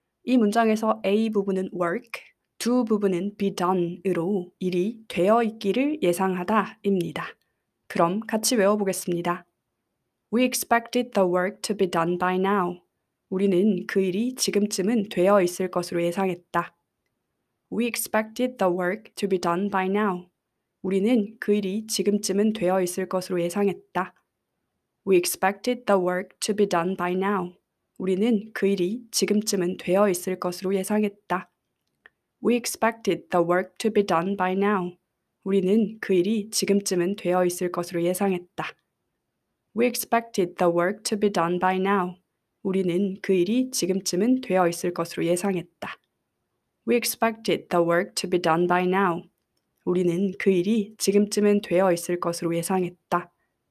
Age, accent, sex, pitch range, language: 20-39, native, female, 180-210 Hz, Korean